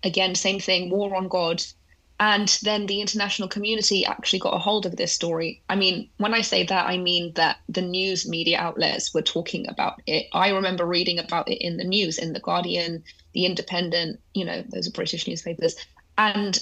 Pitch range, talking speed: 170-200 Hz, 200 wpm